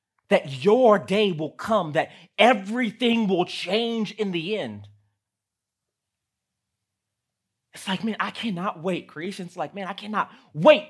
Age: 30-49